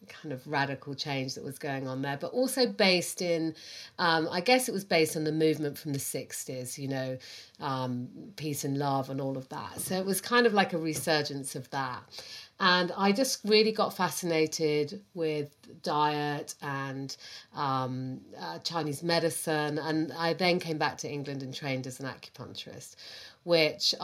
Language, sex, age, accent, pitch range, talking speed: English, female, 40-59, British, 140-165 Hz, 175 wpm